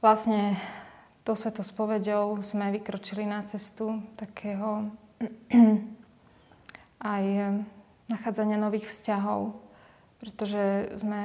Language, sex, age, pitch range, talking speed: Slovak, female, 20-39, 205-220 Hz, 80 wpm